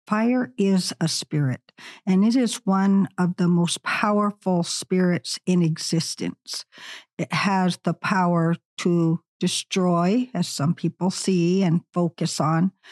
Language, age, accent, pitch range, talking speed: English, 60-79, American, 160-195 Hz, 130 wpm